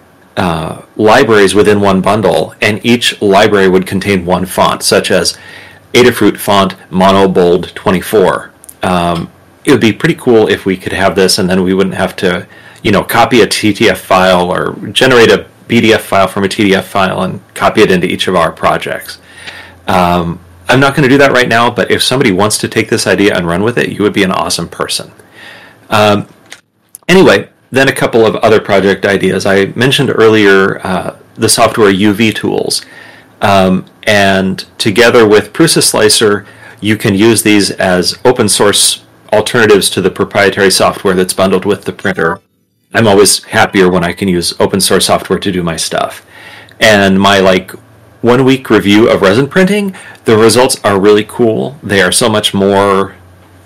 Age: 30-49